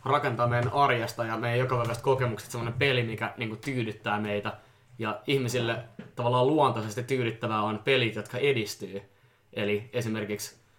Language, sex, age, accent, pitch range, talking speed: Finnish, male, 20-39, native, 115-135 Hz, 140 wpm